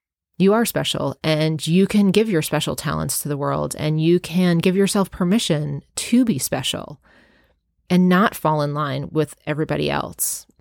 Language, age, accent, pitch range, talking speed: English, 30-49, American, 150-185 Hz, 170 wpm